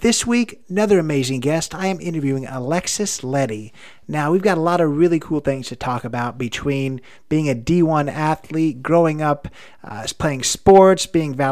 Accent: American